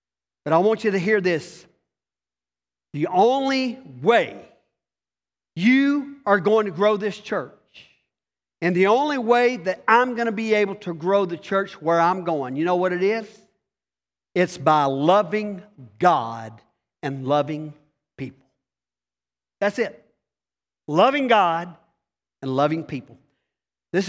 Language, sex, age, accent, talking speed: English, male, 50-69, American, 135 wpm